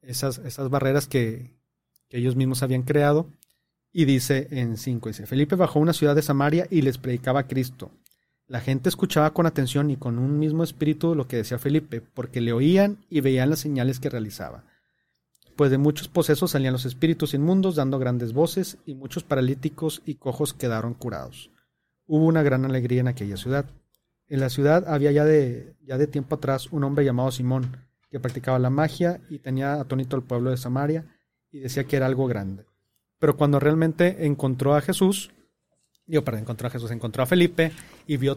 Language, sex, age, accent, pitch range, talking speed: Spanish, male, 40-59, Mexican, 125-150 Hz, 185 wpm